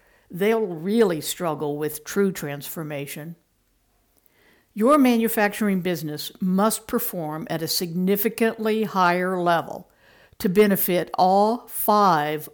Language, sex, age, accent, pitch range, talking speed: English, female, 60-79, American, 170-225 Hz, 95 wpm